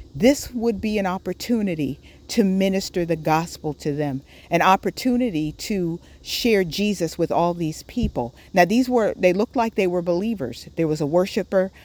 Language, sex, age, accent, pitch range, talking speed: English, female, 50-69, American, 170-210 Hz, 165 wpm